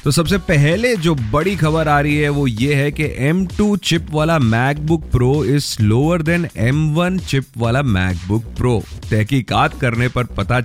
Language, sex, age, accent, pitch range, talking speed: Hindi, male, 30-49, native, 110-160 Hz, 175 wpm